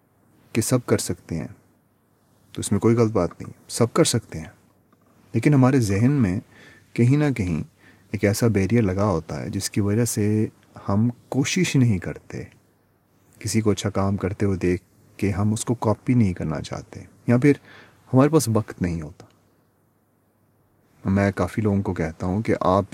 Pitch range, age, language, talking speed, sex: 95-120 Hz, 30-49, Urdu, 175 wpm, male